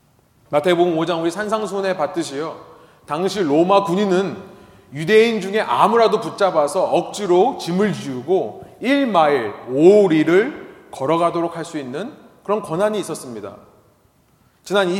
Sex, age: male, 30-49